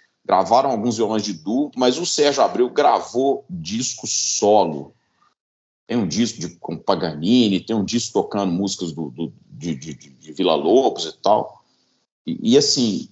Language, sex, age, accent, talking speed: Portuguese, male, 50-69, Brazilian, 160 wpm